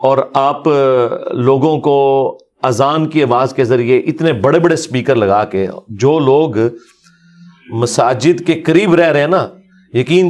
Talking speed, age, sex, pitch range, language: 145 wpm, 40-59, male, 135-180 Hz, Urdu